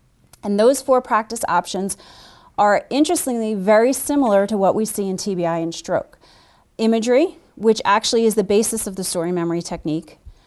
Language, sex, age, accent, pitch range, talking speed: English, female, 30-49, American, 180-220 Hz, 160 wpm